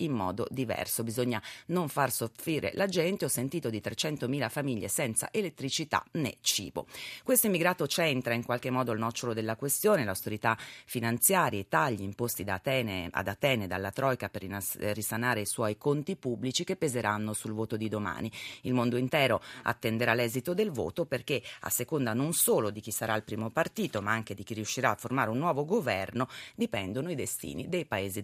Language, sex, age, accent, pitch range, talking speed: Italian, female, 30-49, native, 105-140 Hz, 175 wpm